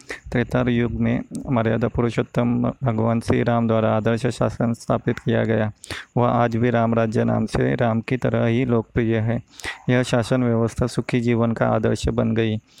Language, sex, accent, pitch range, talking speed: Hindi, male, native, 115-125 Hz, 165 wpm